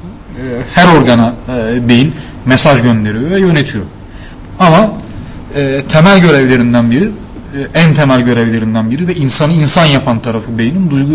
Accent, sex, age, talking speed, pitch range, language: native, male, 40-59, 135 wpm, 120-160 Hz, Turkish